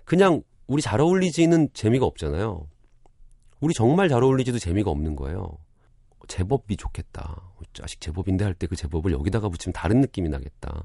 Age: 40-59